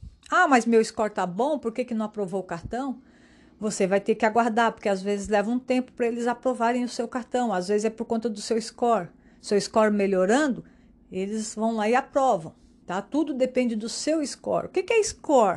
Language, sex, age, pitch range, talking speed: Portuguese, female, 50-69, 210-255 Hz, 215 wpm